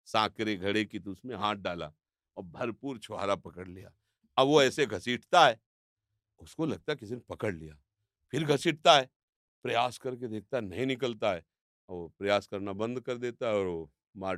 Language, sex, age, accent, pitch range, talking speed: Hindi, male, 50-69, native, 100-125 Hz, 180 wpm